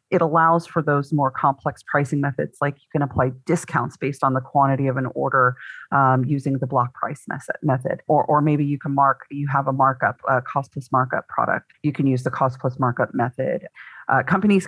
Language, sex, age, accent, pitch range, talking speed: English, female, 30-49, American, 135-160 Hz, 210 wpm